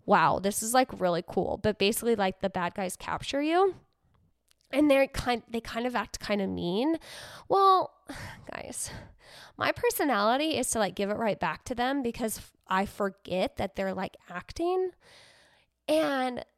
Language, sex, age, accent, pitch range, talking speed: English, female, 10-29, American, 210-295 Hz, 155 wpm